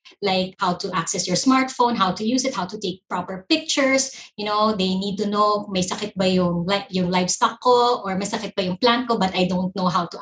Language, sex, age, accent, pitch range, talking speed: English, female, 20-39, Filipino, 185-225 Hz, 240 wpm